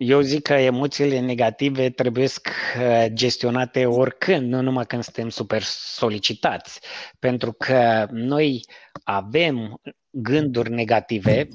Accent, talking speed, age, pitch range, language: native, 105 wpm, 20-39, 115-140 Hz, Romanian